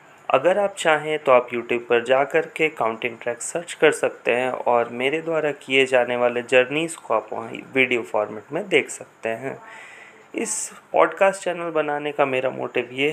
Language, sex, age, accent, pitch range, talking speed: Hindi, male, 30-49, native, 120-150 Hz, 175 wpm